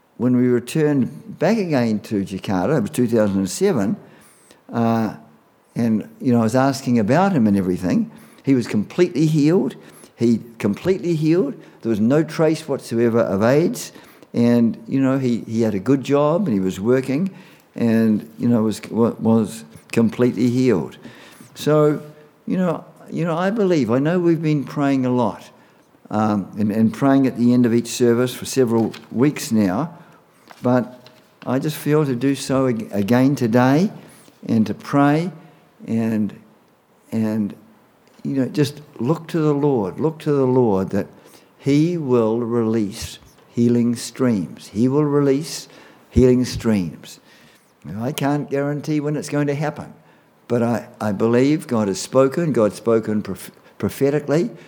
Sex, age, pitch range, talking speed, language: male, 50-69, 115-145 Hz, 150 wpm, English